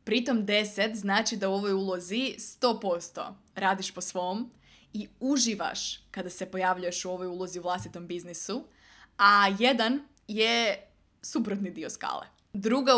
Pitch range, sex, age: 190-220 Hz, female, 20-39